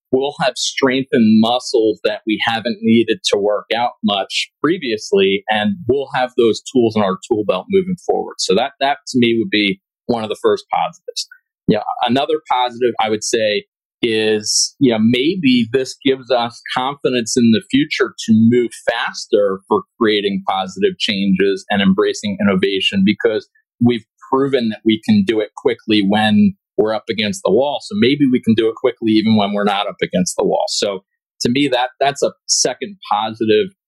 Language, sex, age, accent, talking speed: English, male, 30-49, American, 180 wpm